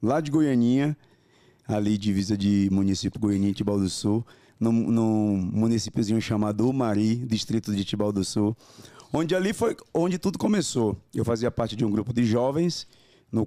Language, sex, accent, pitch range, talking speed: Portuguese, male, Brazilian, 110-145 Hz, 165 wpm